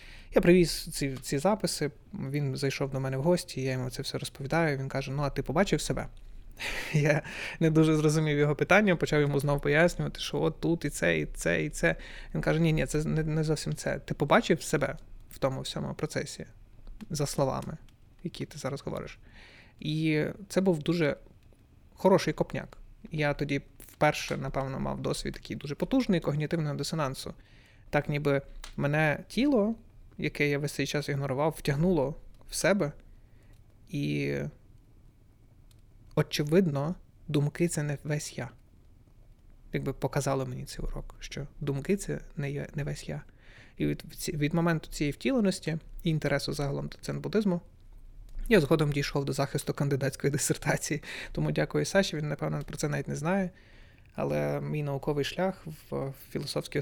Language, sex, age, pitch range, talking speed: Ukrainian, male, 20-39, 120-160 Hz, 155 wpm